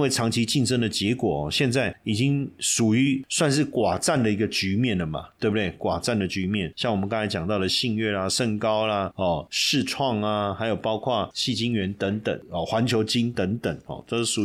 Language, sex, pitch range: Chinese, male, 95-125 Hz